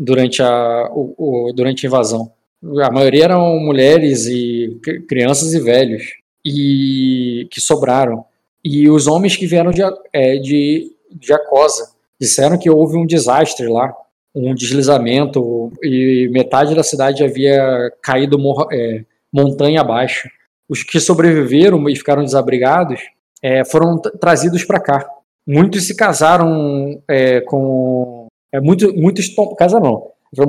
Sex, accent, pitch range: male, Brazilian, 125-160 Hz